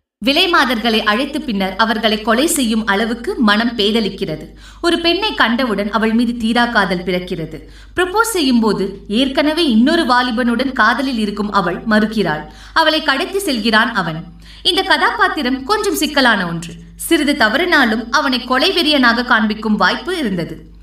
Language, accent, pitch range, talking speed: Tamil, native, 210-295 Hz, 125 wpm